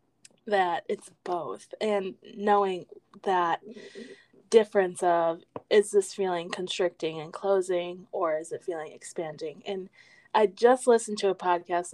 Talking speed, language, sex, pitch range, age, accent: 130 wpm, English, female, 175-210 Hz, 20-39, American